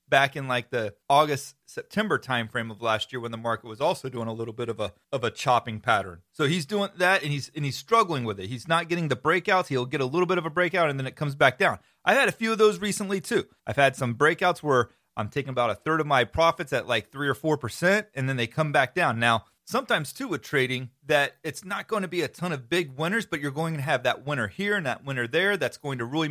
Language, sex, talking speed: English, male, 270 wpm